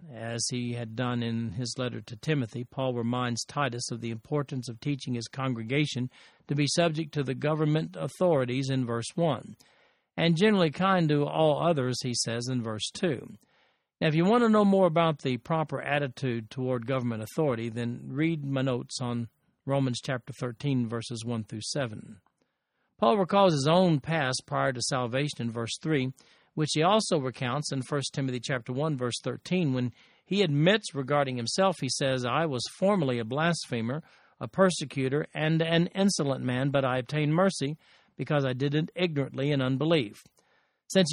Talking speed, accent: 170 wpm, American